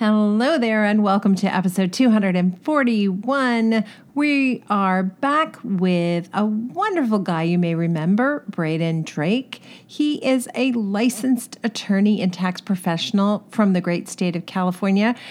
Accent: American